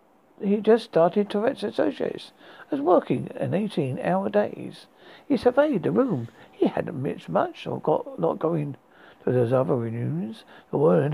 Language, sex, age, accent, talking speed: English, male, 60-79, British, 160 wpm